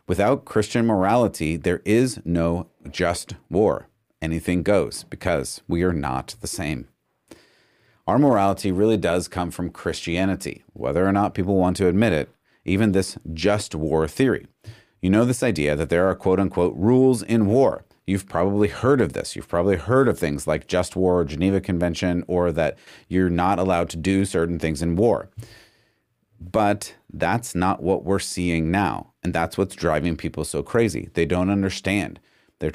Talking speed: 170 wpm